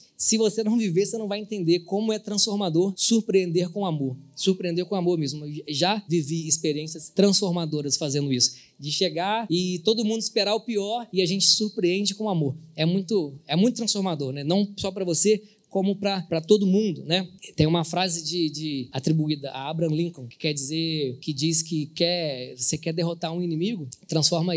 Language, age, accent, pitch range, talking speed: Portuguese, 20-39, Brazilian, 155-195 Hz, 185 wpm